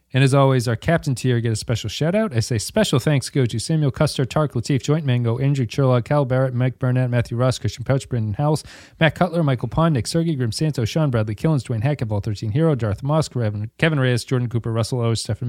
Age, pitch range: 30-49, 120-150 Hz